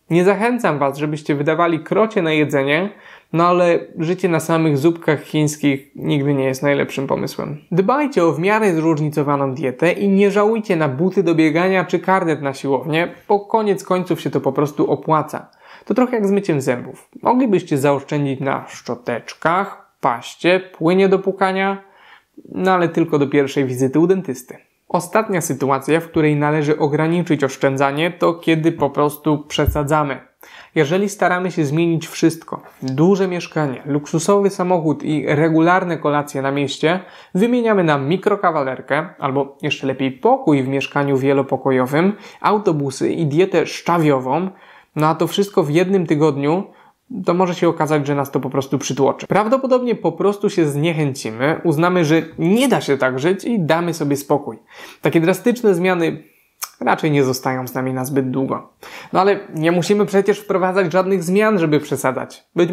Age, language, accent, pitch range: 20-39, Polish, native, 145-190 Hz